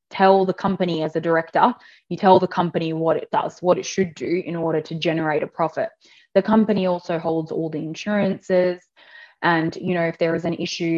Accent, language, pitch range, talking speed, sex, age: Australian, English, 165-195 Hz, 210 wpm, female, 20-39